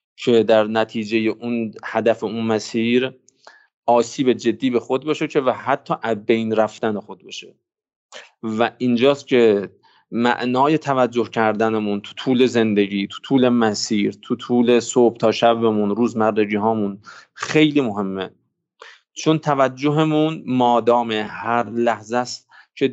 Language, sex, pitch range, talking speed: Persian, male, 110-130 Hz, 120 wpm